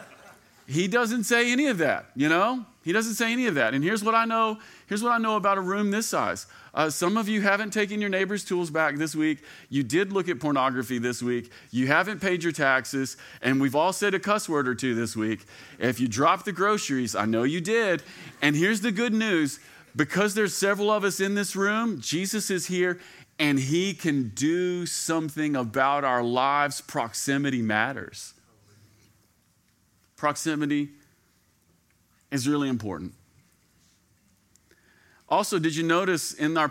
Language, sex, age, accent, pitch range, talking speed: English, male, 40-59, American, 120-180 Hz, 175 wpm